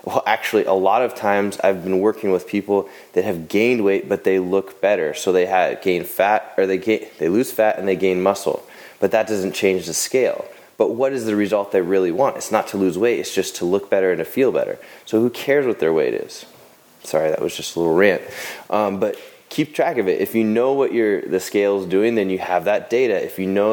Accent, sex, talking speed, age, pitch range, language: American, male, 250 wpm, 20-39, 95-135 Hz, English